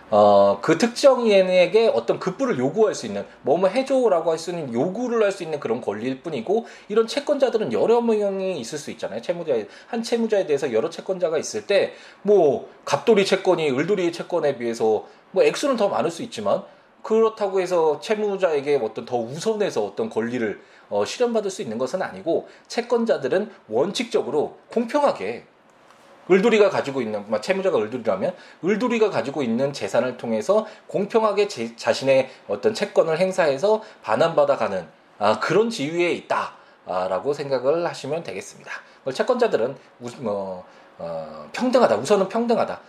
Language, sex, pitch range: Korean, male, 140-225 Hz